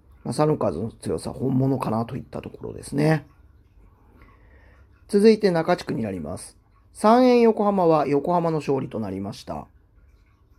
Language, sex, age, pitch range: Japanese, male, 40-59, 95-150 Hz